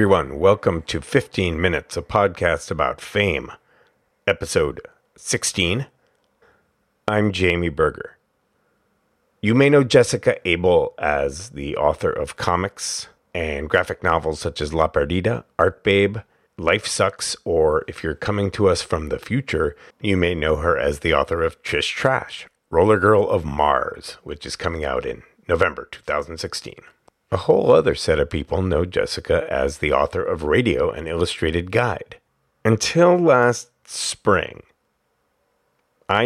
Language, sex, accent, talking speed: English, male, American, 140 wpm